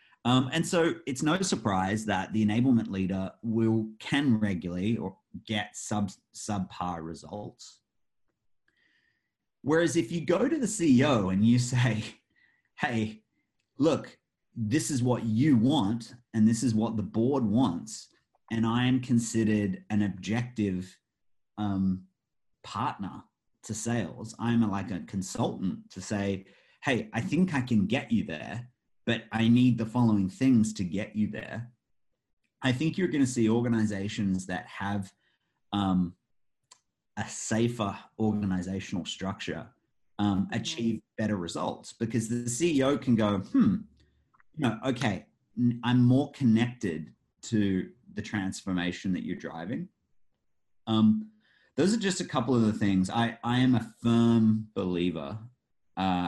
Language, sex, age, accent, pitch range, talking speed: English, male, 30-49, Australian, 100-125 Hz, 135 wpm